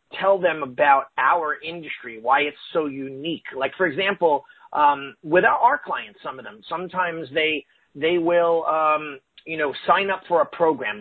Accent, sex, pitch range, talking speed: American, male, 155-200 Hz, 170 wpm